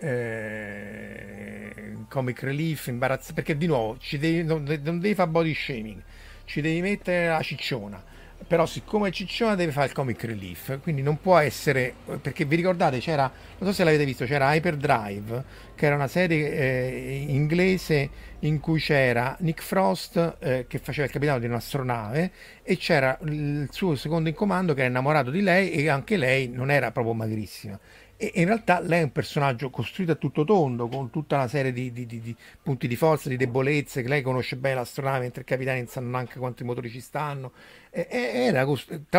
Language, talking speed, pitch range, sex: Italian, 190 wpm, 120-160 Hz, male